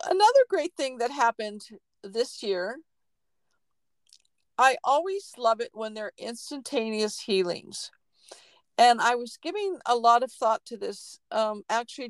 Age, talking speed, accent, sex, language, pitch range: 50-69, 140 wpm, American, female, English, 220-295 Hz